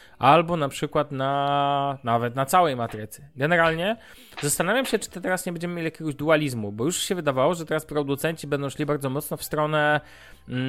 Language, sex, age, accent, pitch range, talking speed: Polish, male, 20-39, native, 130-160 Hz, 185 wpm